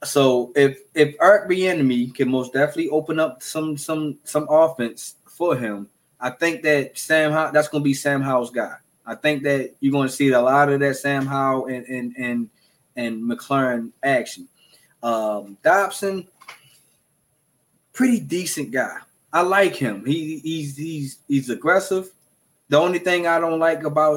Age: 20-39